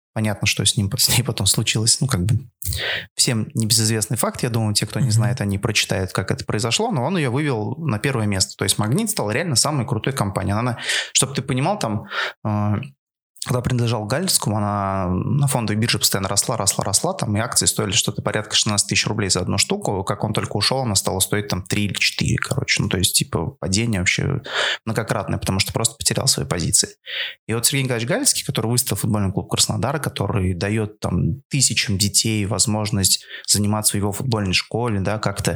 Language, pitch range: Russian, 105-135 Hz